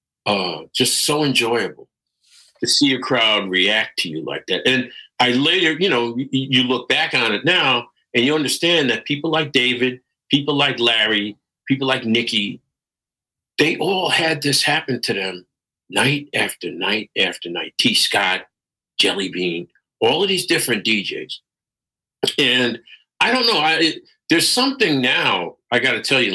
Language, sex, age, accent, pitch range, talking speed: English, male, 50-69, American, 120-170 Hz, 160 wpm